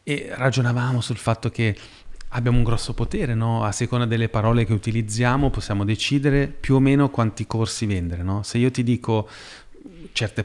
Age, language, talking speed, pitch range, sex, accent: 30-49, Italian, 170 wpm, 105-125 Hz, male, native